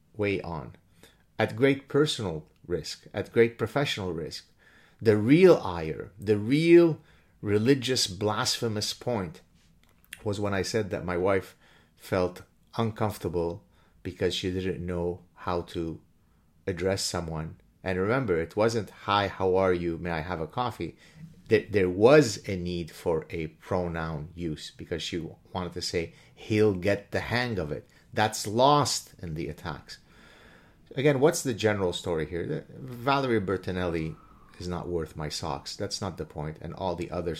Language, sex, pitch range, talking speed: English, male, 85-110 Hz, 150 wpm